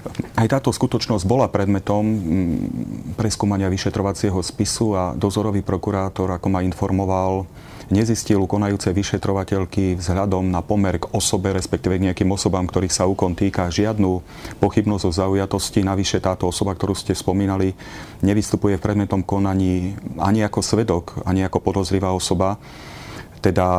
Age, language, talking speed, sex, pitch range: 40-59, Slovak, 130 wpm, male, 90-105 Hz